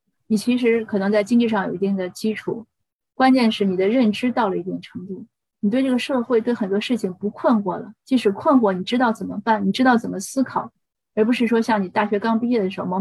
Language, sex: Chinese, female